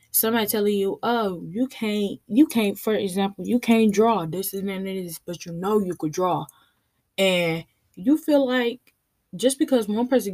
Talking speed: 185 wpm